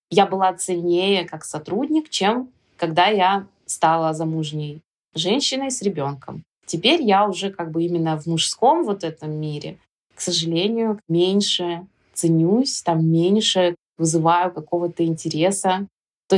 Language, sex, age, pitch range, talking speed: Russian, female, 20-39, 165-200 Hz, 125 wpm